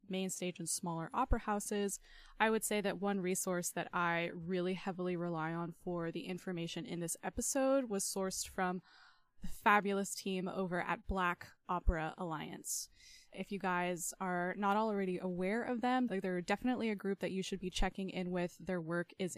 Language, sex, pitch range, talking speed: English, female, 175-205 Hz, 180 wpm